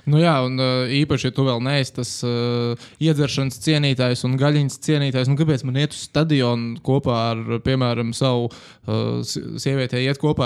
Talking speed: 165 wpm